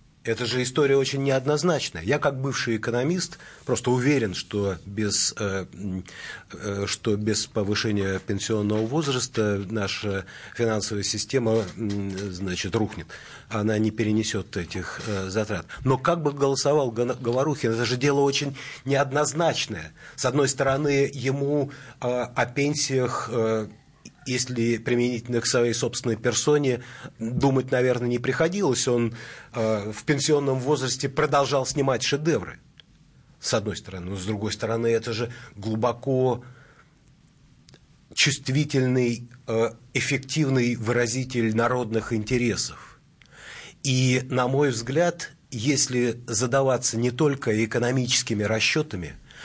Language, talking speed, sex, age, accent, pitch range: Russian, 105 wpm, male, 30-49, native, 110-140 Hz